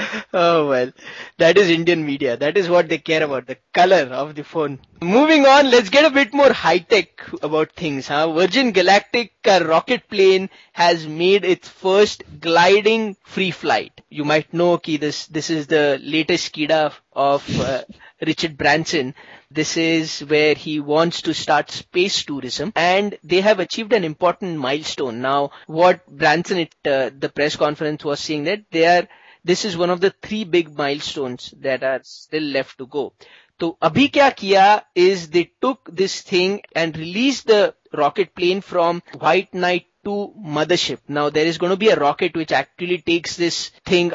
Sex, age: male, 20-39